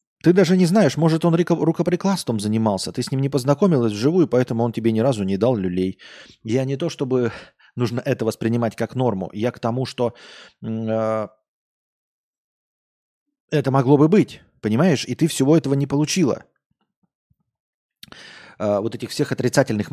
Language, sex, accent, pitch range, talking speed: Russian, male, native, 115-145 Hz, 155 wpm